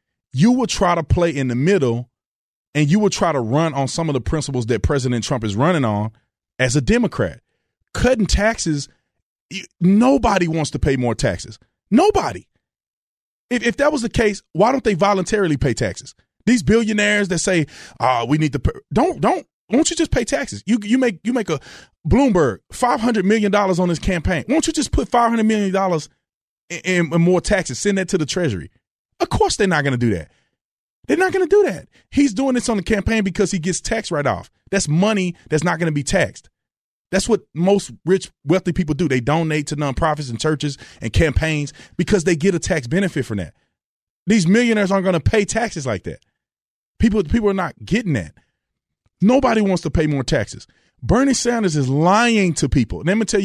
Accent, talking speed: American, 205 wpm